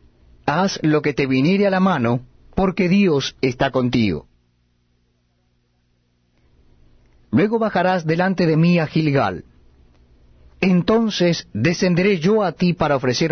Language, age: Spanish, 40-59